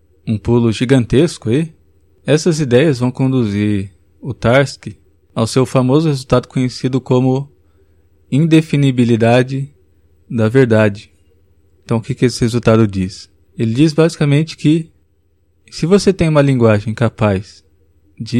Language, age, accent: Portuguese, 20-39, Brazilian